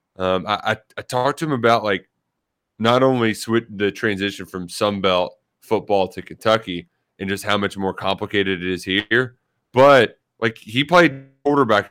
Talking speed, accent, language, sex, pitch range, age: 155 wpm, American, English, male, 95-120 Hz, 20-39